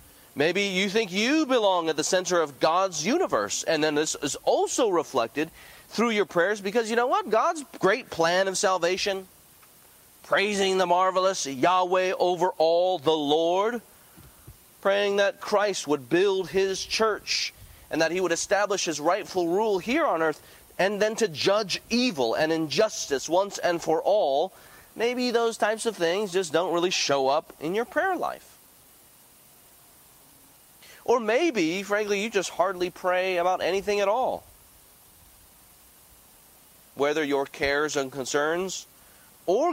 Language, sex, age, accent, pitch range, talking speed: English, male, 30-49, American, 155-210 Hz, 145 wpm